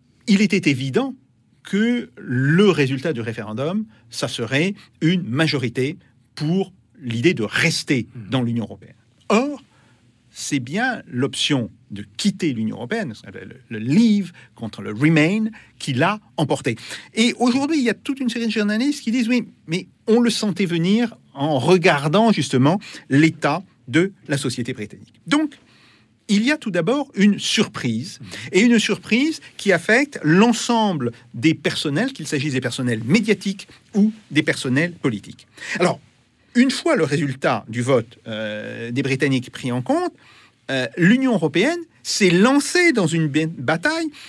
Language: French